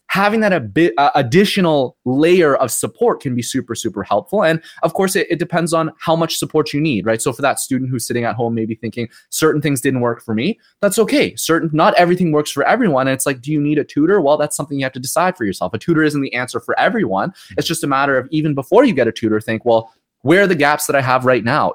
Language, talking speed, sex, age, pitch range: English, 270 wpm, male, 20-39, 125-170 Hz